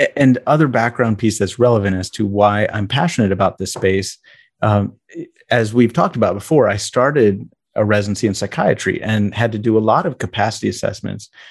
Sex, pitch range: male, 100-125 Hz